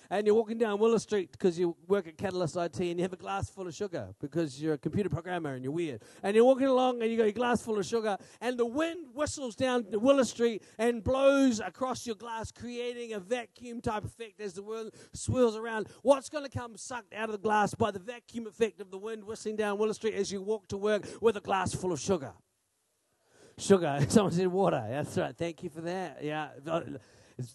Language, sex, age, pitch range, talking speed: English, male, 40-59, 170-235 Hz, 230 wpm